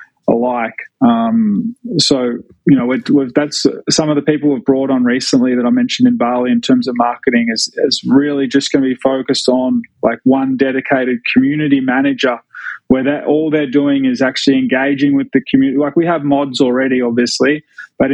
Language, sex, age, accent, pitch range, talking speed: English, male, 20-39, Australian, 130-160 Hz, 190 wpm